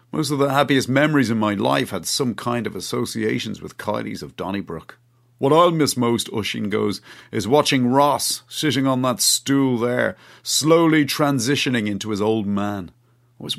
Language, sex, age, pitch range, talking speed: English, male, 40-59, 105-130 Hz, 170 wpm